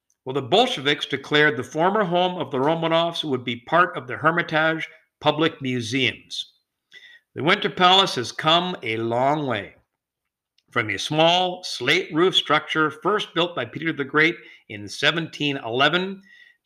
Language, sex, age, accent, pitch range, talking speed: English, male, 50-69, American, 130-180 Hz, 145 wpm